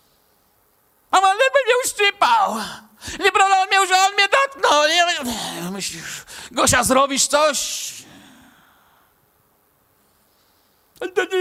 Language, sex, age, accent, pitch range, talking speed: Polish, male, 50-69, native, 225-275 Hz, 110 wpm